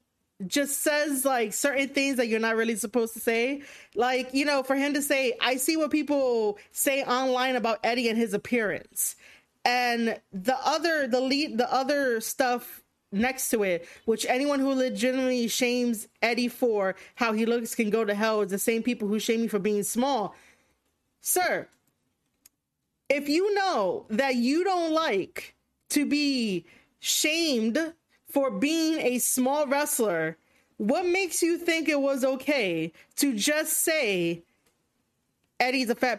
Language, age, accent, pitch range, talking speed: English, 30-49, American, 225-280 Hz, 155 wpm